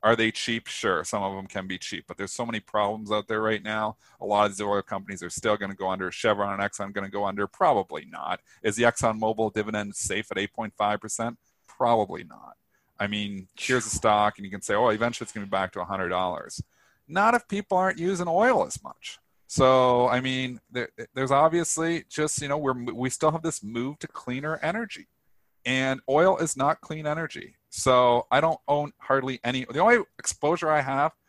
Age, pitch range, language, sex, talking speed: 40-59, 110-150 Hz, English, male, 215 wpm